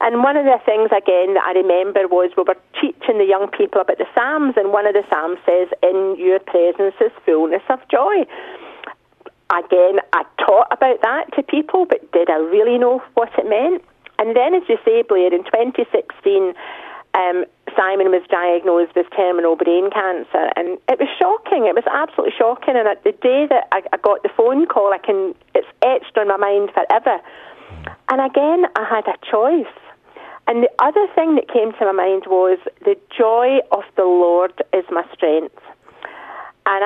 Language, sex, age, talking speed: English, female, 40-59, 185 wpm